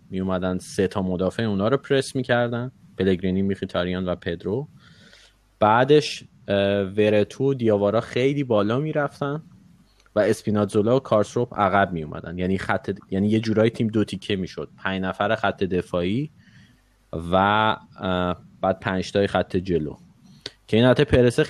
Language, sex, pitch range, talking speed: Persian, male, 95-115 Hz, 135 wpm